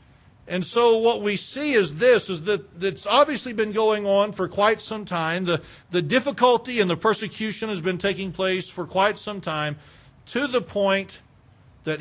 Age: 50-69